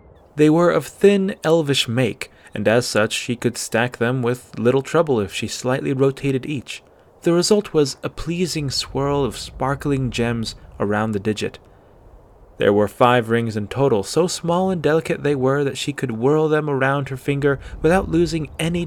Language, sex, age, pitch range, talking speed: English, male, 20-39, 105-135 Hz, 180 wpm